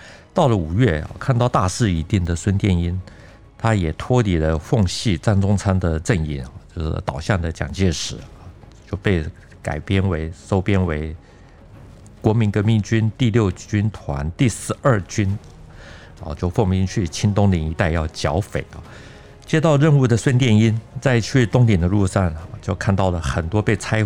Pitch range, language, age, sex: 85-110 Hz, Chinese, 50-69, male